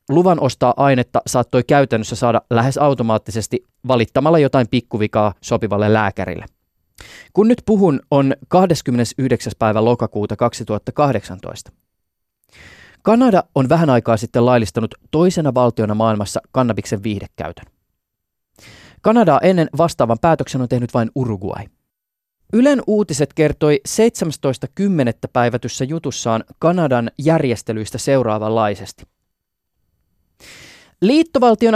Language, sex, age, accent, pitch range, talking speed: Finnish, male, 20-39, native, 115-170 Hz, 95 wpm